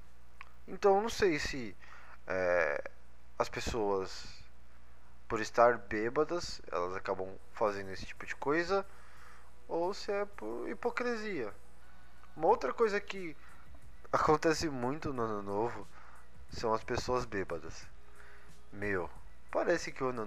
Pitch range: 90-135 Hz